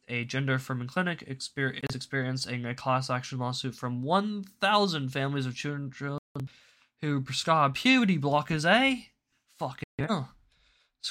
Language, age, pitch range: English, 20-39, 125-155 Hz